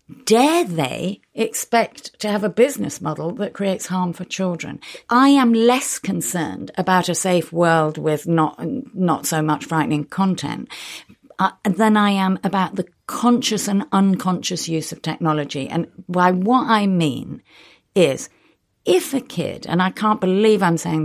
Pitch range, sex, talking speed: 165-225 Hz, female, 155 wpm